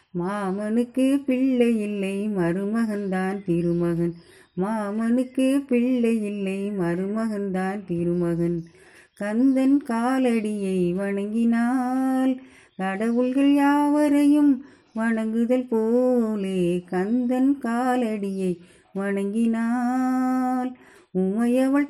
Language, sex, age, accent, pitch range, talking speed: Tamil, female, 30-49, native, 195-255 Hz, 60 wpm